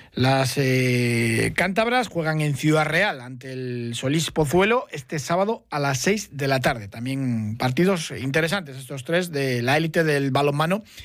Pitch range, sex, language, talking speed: 135-170 Hz, male, Spanish, 160 wpm